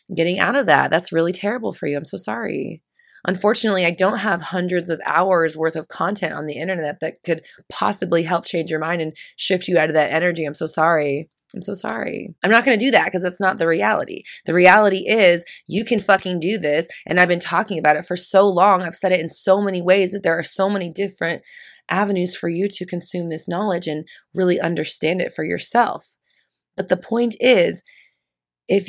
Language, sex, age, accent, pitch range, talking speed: English, female, 20-39, American, 160-200 Hz, 215 wpm